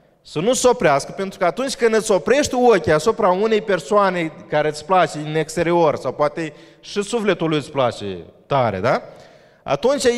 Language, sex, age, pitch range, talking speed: Romanian, male, 30-49, 155-225 Hz, 170 wpm